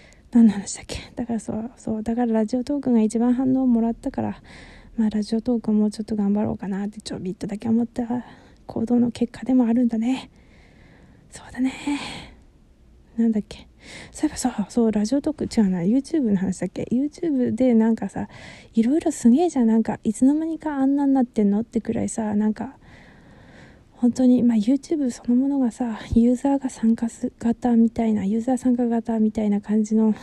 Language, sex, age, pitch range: Japanese, female, 20-39, 220-250 Hz